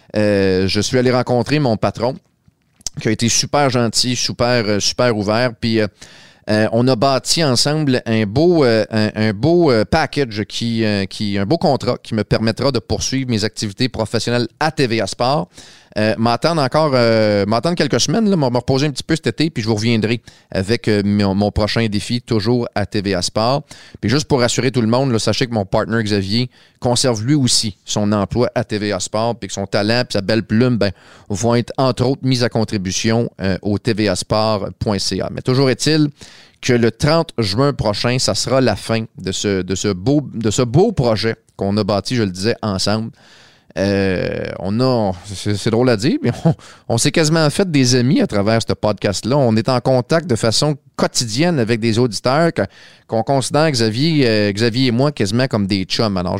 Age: 30-49